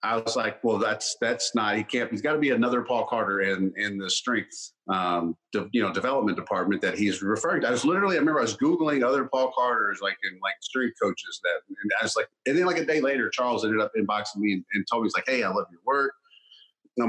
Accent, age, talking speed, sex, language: American, 40-59, 260 wpm, male, English